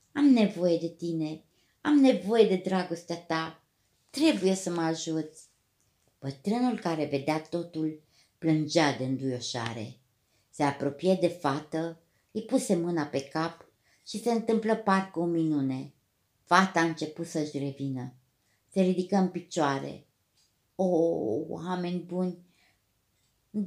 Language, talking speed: Romanian, 120 wpm